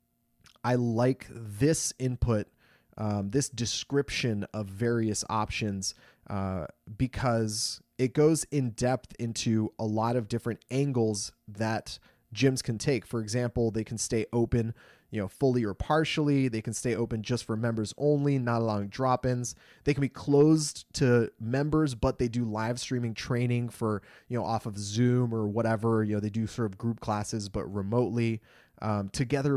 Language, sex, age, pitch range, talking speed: English, male, 20-39, 110-130 Hz, 160 wpm